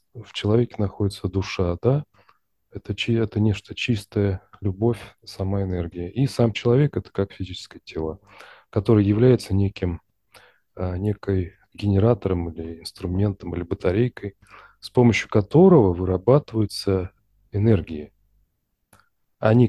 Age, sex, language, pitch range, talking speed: 30-49, male, Russian, 95-115 Hz, 105 wpm